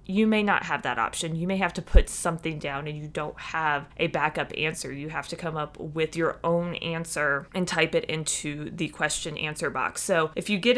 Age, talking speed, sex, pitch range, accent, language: 20-39, 230 wpm, female, 160-200 Hz, American, English